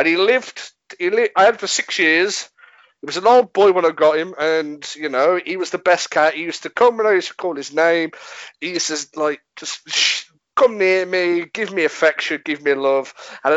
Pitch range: 150-200 Hz